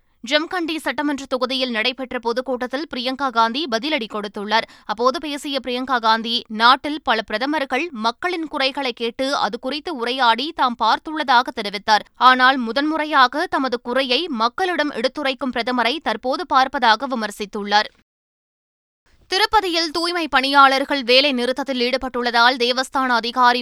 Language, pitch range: Tamil, 235-275 Hz